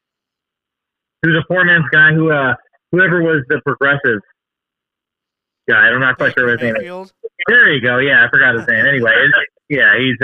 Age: 30-49